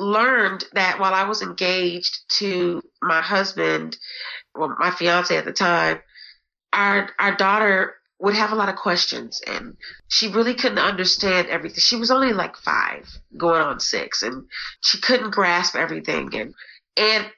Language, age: Swedish, 30-49